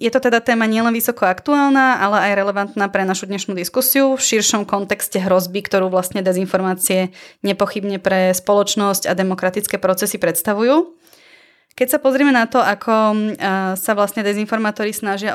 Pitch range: 190-215 Hz